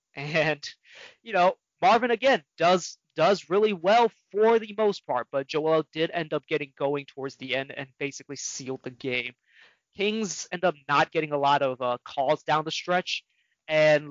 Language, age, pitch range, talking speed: English, 20-39, 140-180 Hz, 180 wpm